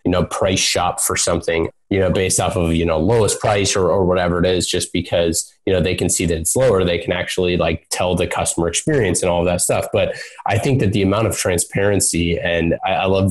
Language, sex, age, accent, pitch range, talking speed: English, male, 20-39, American, 90-110 Hz, 250 wpm